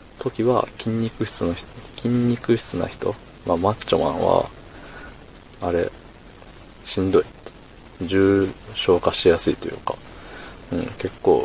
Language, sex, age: Japanese, male, 20-39